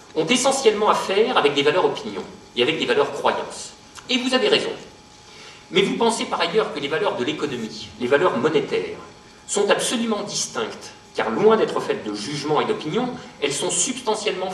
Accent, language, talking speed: French, French, 180 wpm